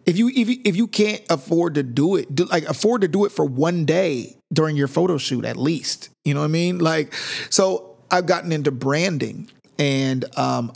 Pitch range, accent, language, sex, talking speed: 125-150 Hz, American, English, male, 215 wpm